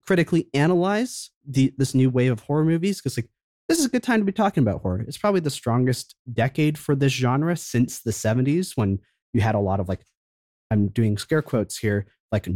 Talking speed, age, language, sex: 210 wpm, 30-49, English, male